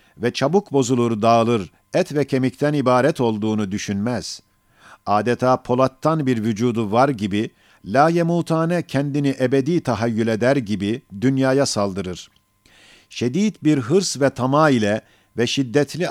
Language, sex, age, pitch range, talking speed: Turkish, male, 50-69, 115-140 Hz, 120 wpm